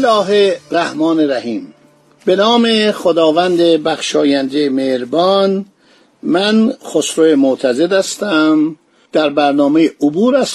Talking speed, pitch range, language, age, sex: 90 wpm, 155-215 Hz, Persian, 50-69, male